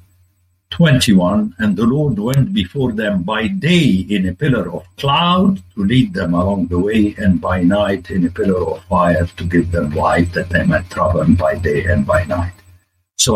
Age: 60-79